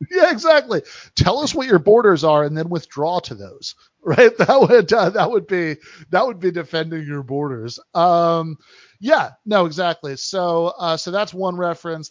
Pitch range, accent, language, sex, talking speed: 125-160 Hz, American, English, male, 180 wpm